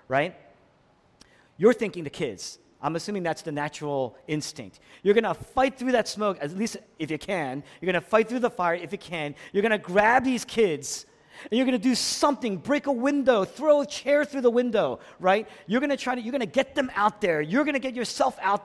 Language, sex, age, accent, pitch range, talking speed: English, male, 40-59, American, 180-255 Hz, 235 wpm